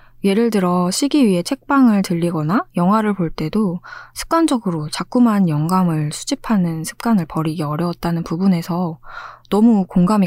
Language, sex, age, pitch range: Korean, female, 20-39, 160-230 Hz